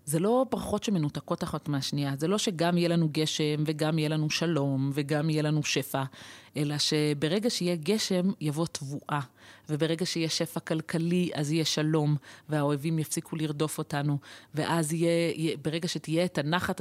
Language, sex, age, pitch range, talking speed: Hebrew, female, 30-49, 150-185 Hz, 155 wpm